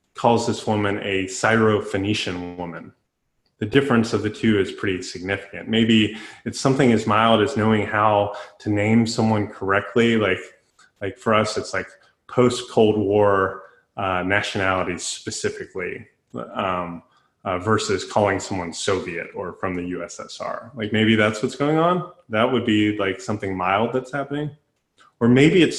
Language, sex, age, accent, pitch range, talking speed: English, male, 20-39, American, 105-130 Hz, 150 wpm